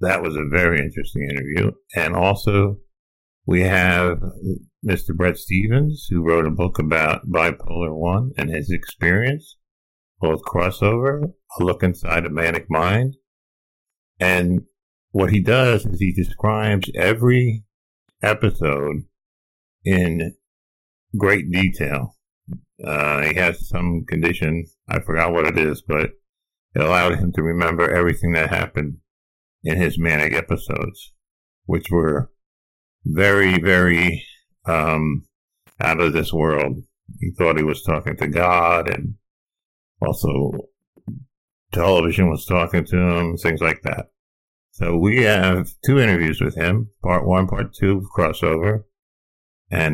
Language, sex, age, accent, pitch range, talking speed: English, male, 50-69, American, 80-100 Hz, 125 wpm